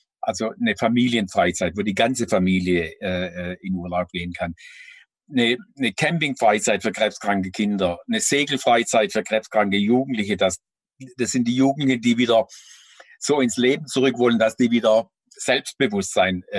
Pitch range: 105-135 Hz